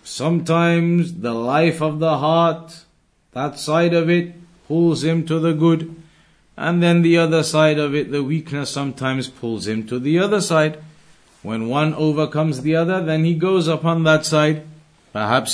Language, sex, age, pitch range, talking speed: English, male, 50-69, 140-175 Hz, 165 wpm